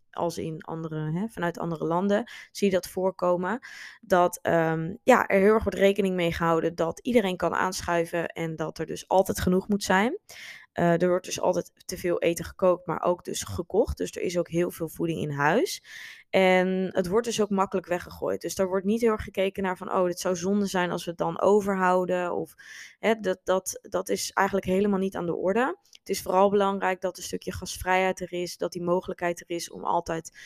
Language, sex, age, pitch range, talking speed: Dutch, female, 20-39, 170-200 Hz, 215 wpm